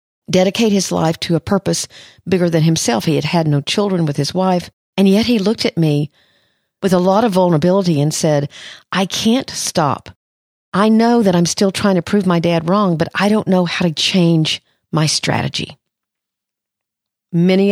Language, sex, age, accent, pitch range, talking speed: English, female, 50-69, American, 150-190 Hz, 185 wpm